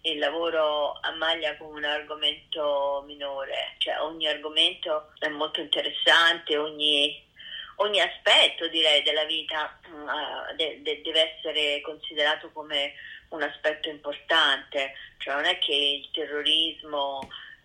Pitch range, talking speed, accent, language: 145-160 Hz, 120 wpm, native, Italian